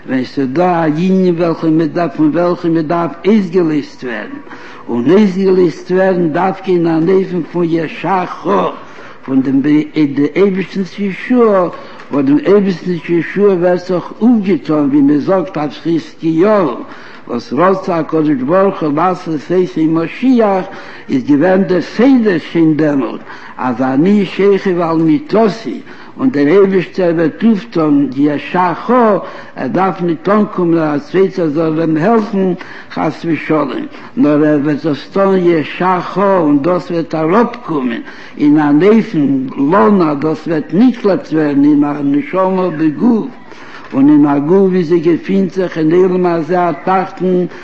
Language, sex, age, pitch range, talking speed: Hebrew, male, 60-79, 160-195 Hz, 125 wpm